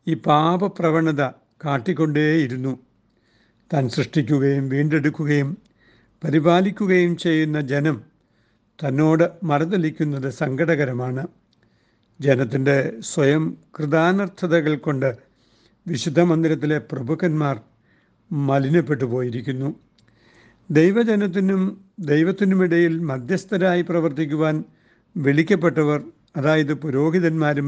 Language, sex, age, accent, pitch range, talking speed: Malayalam, male, 60-79, native, 135-165 Hz, 60 wpm